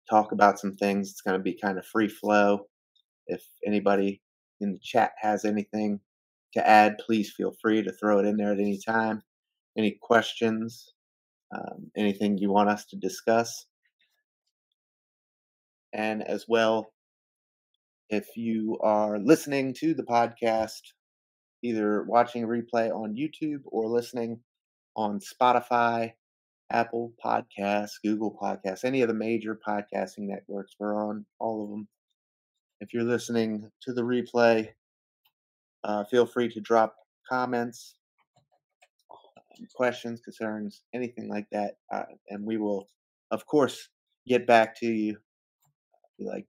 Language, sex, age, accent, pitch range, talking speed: English, male, 30-49, American, 100-115 Hz, 135 wpm